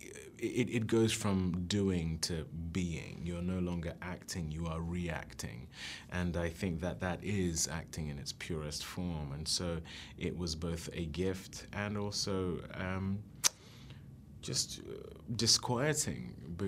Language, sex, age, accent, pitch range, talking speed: English, male, 30-49, British, 80-95 Hz, 135 wpm